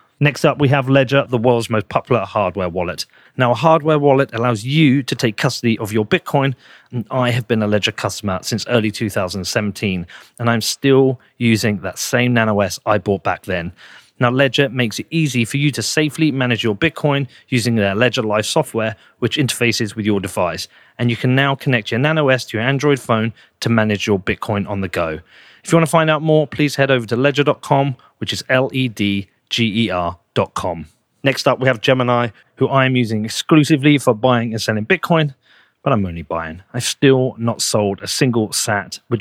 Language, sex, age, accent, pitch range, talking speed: English, male, 40-59, British, 110-135 Hz, 195 wpm